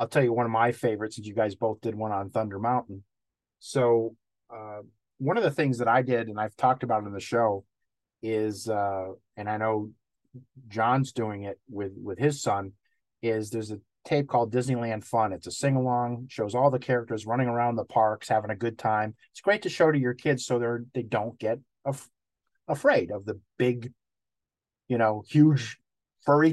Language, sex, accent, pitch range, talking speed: English, male, American, 110-140 Hz, 200 wpm